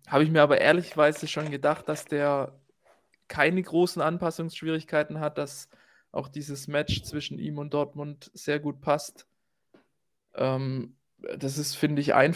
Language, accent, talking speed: German, German, 145 wpm